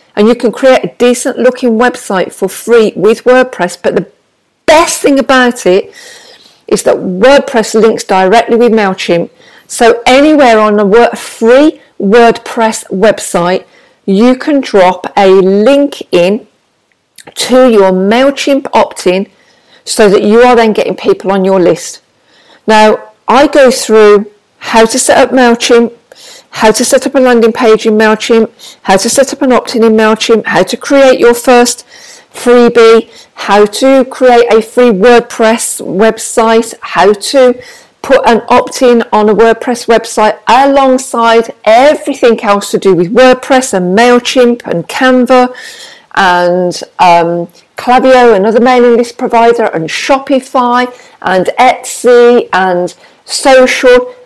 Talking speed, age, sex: 140 wpm, 50-69, female